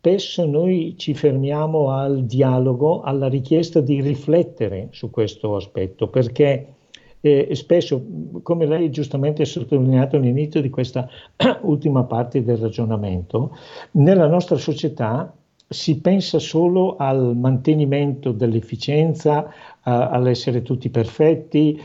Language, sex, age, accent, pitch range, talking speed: Italian, male, 60-79, native, 120-160 Hz, 110 wpm